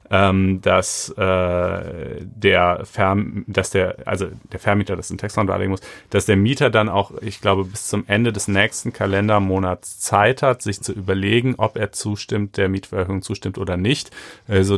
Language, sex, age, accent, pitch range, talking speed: German, male, 30-49, German, 95-110 Hz, 170 wpm